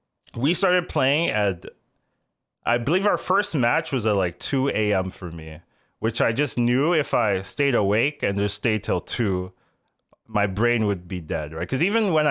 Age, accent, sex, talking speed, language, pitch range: 20-39, American, male, 180 wpm, English, 95-125 Hz